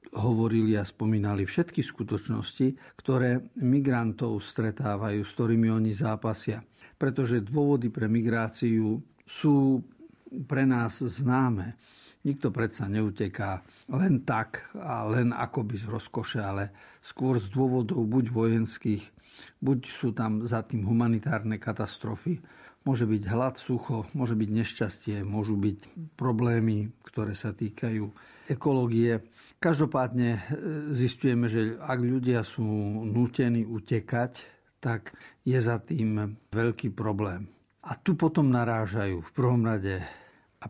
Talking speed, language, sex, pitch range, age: 115 wpm, Slovak, male, 105-125 Hz, 50-69